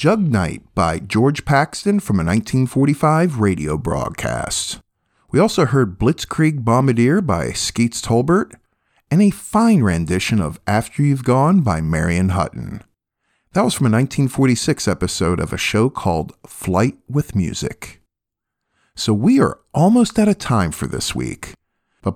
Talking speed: 145 wpm